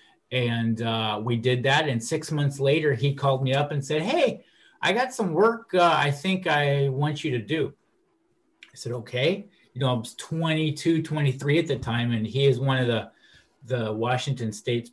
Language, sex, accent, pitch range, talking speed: English, male, American, 115-140 Hz, 195 wpm